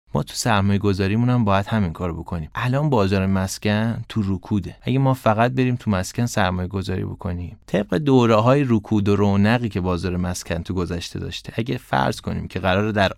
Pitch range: 95-125 Hz